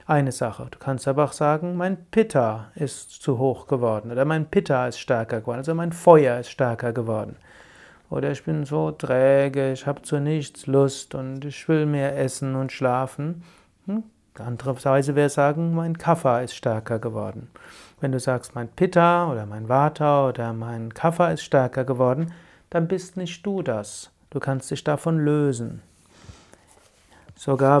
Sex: male